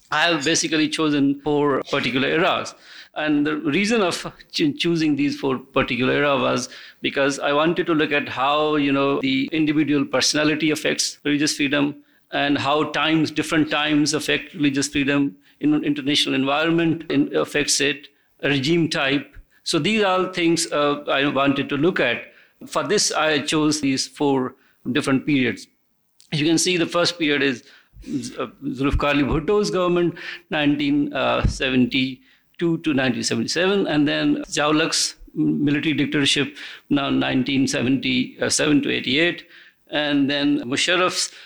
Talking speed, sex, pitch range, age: 140 wpm, male, 140-165 Hz, 50-69